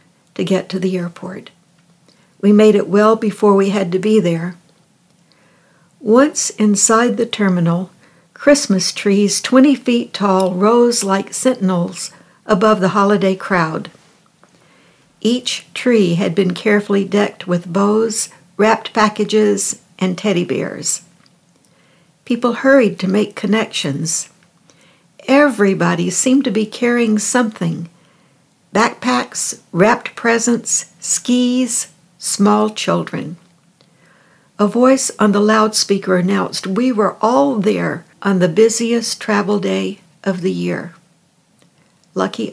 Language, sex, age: English, female, 60-79